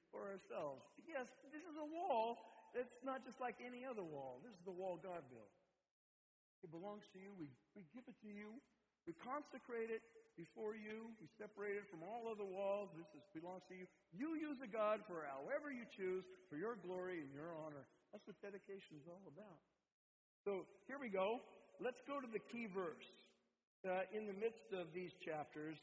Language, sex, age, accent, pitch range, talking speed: English, male, 60-79, American, 170-225 Hz, 195 wpm